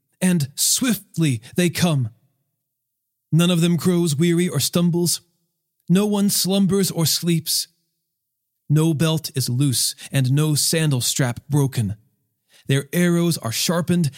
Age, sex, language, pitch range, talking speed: 40-59, male, English, 130-180 Hz, 125 wpm